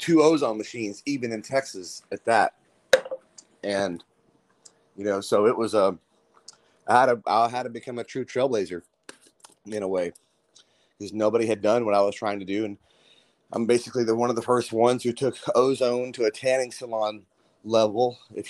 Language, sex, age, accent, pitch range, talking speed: English, male, 30-49, American, 100-120 Hz, 180 wpm